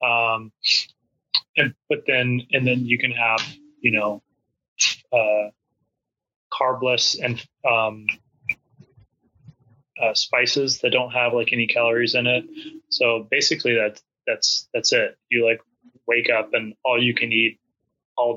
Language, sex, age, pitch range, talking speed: English, male, 30-49, 115-140 Hz, 135 wpm